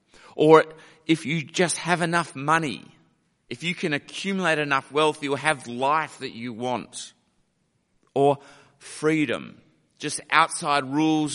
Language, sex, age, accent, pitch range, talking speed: English, male, 30-49, Australian, 125-155 Hz, 125 wpm